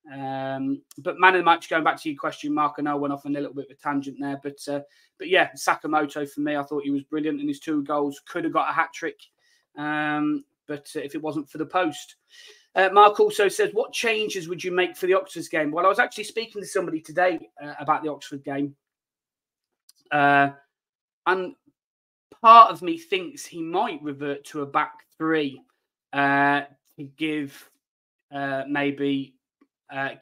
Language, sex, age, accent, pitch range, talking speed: English, male, 20-39, British, 140-155 Hz, 200 wpm